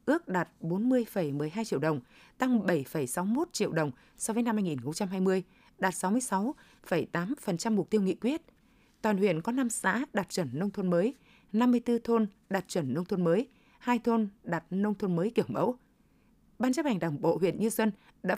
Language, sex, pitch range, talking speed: Vietnamese, female, 180-235 Hz, 175 wpm